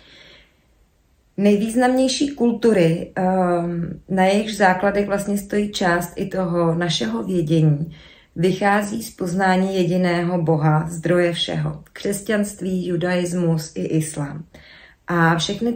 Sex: female